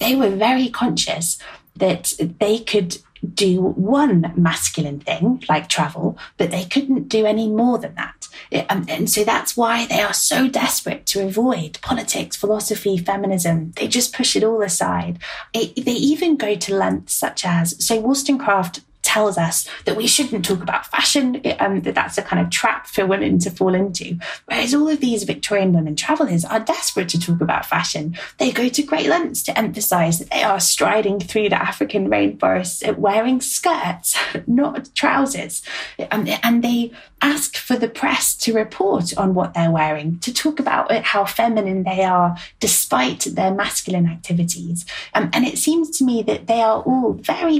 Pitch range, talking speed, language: 180-255 Hz, 170 wpm, English